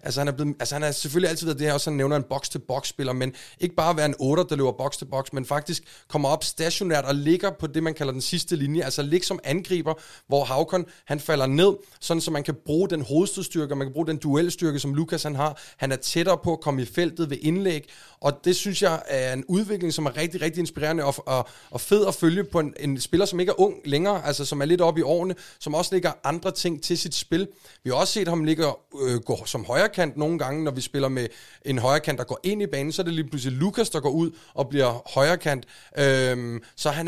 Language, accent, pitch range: Danish, native, 140-170 Hz